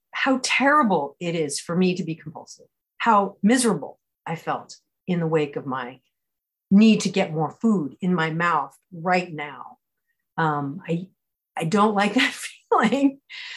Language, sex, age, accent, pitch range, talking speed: English, female, 40-59, American, 180-230 Hz, 155 wpm